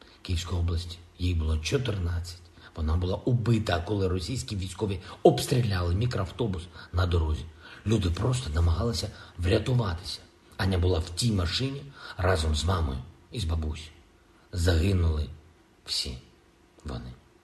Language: Ukrainian